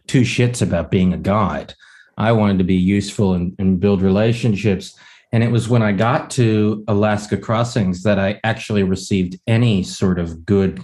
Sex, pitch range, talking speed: male, 95-120 Hz, 175 wpm